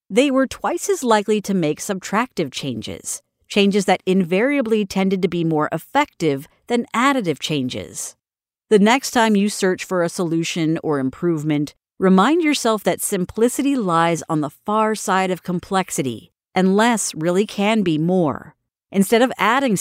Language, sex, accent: English, female, American